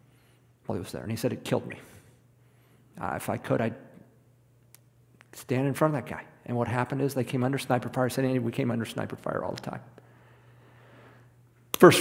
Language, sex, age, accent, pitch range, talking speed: English, male, 50-69, American, 120-140 Hz, 205 wpm